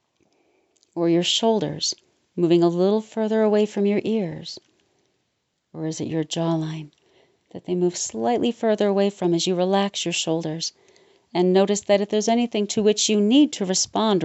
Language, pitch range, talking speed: English, 180-265 Hz, 170 wpm